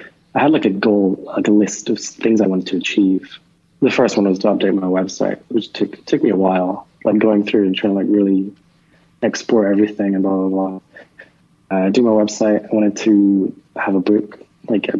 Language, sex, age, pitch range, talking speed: English, male, 20-39, 95-110 Hz, 215 wpm